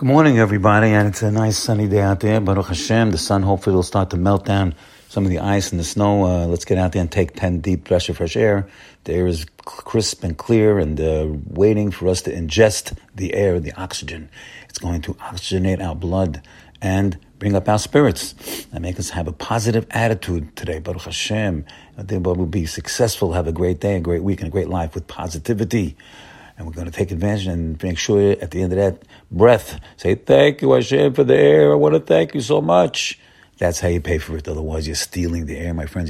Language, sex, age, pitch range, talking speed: English, male, 50-69, 85-100 Hz, 225 wpm